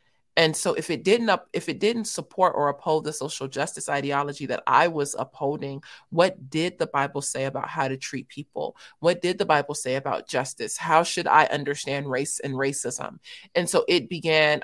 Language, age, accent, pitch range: English, 30-49, American, 140-160 Hz